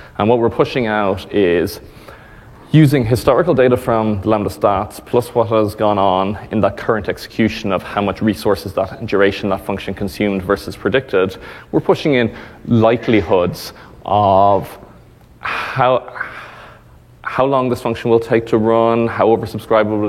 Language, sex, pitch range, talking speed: English, male, 100-115 Hz, 145 wpm